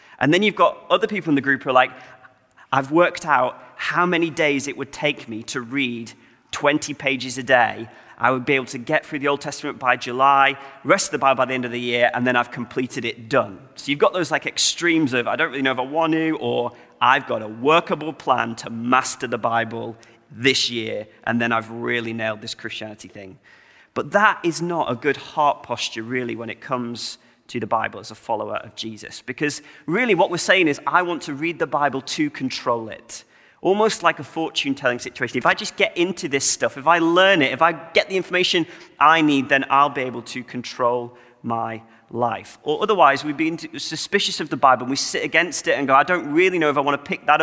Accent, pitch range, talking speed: British, 120-160 Hz, 230 wpm